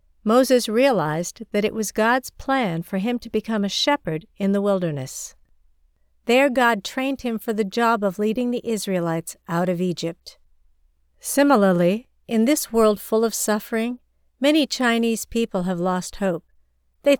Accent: American